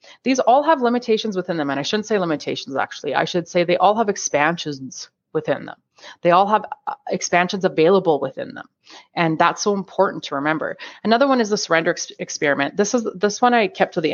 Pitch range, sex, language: 145-185 Hz, female, English